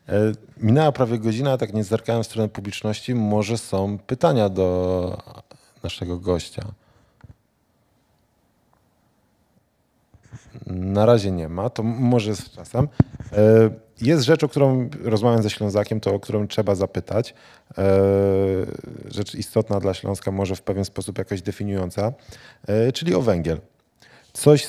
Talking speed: 120 wpm